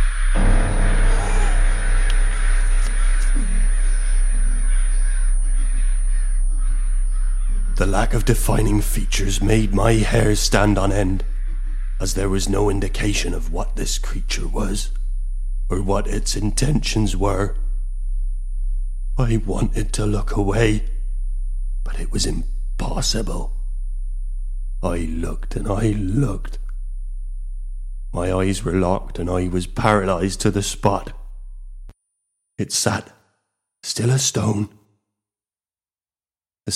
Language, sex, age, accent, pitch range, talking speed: English, male, 30-49, British, 90-105 Hz, 95 wpm